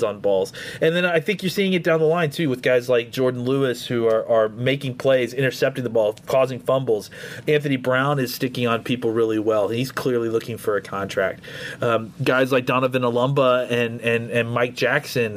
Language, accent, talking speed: English, American, 205 wpm